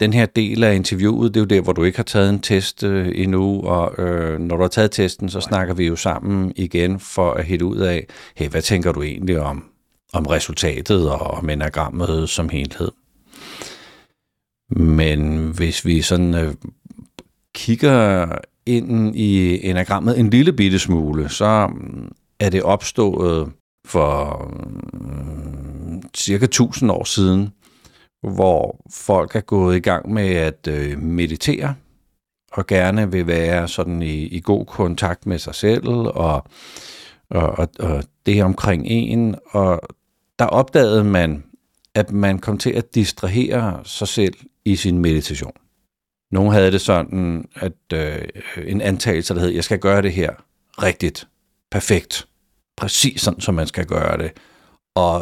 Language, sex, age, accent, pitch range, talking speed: Danish, male, 50-69, native, 85-100 Hz, 150 wpm